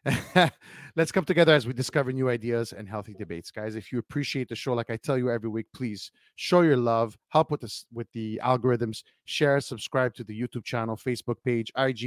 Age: 30-49